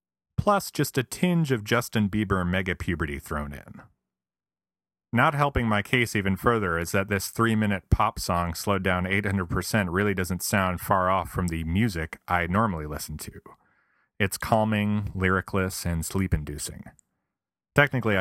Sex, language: male, English